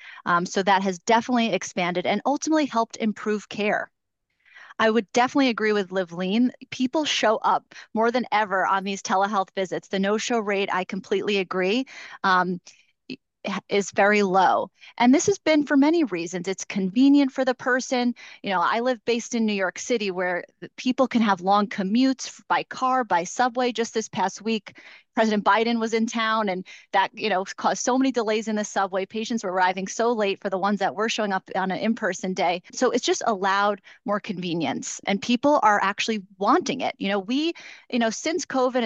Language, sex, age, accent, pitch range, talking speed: English, female, 30-49, American, 195-245 Hz, 190 wpm